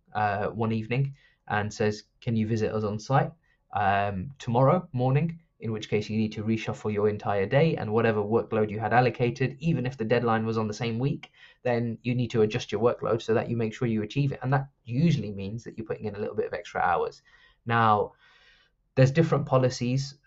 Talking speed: 215 wpm